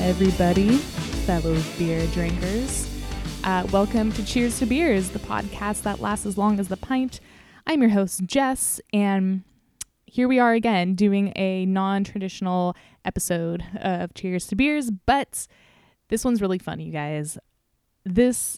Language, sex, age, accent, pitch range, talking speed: English, female, 20-39, American, 185-240 Hz, 140 wpm